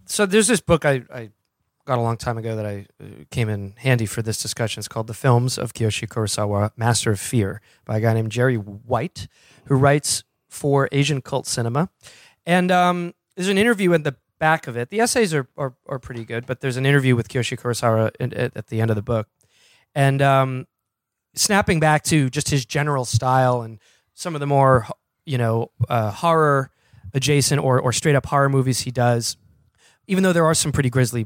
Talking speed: 205 wpm